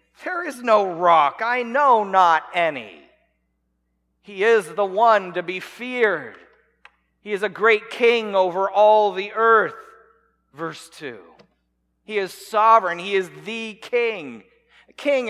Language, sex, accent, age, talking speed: English, male, American, 40-59, 135 wpm